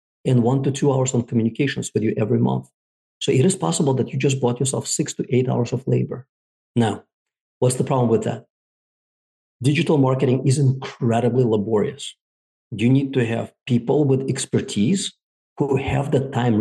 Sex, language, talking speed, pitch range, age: male, English, 175 wpm, 115-135 Hz, 40-59